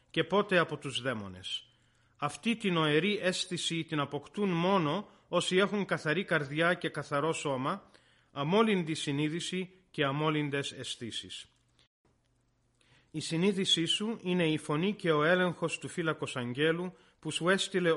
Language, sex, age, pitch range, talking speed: Greek, male, 40-59, 140-185 Hz, 130 wpm